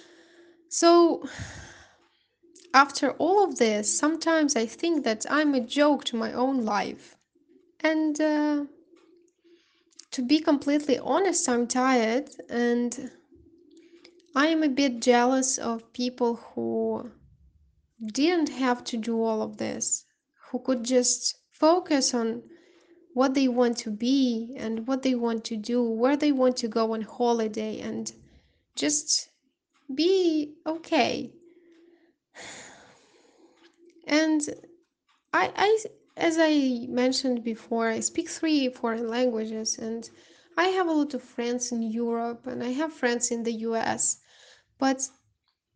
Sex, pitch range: female, 235-315 Hz